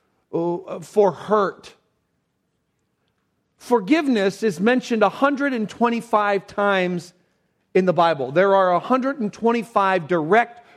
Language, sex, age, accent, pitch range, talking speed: English, male, 50-69, American, 185-230 Hz, 80 wpm